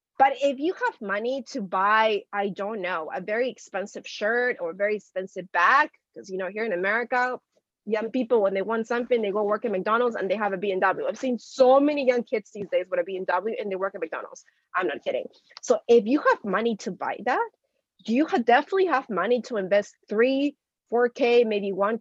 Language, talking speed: English, 220 wpm